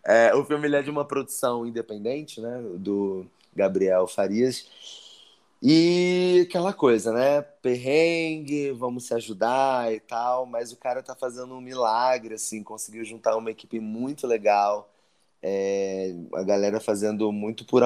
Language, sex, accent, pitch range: Portuguese, male, Brazilian, 110-140 Hz